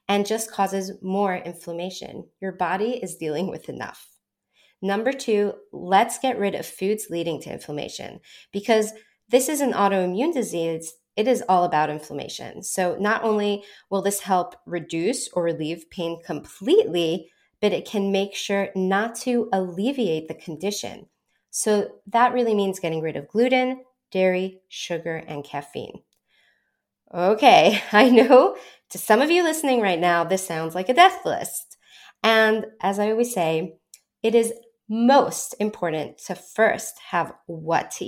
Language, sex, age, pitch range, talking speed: English, female, 20-39, 180-235 Hz, 150 wpm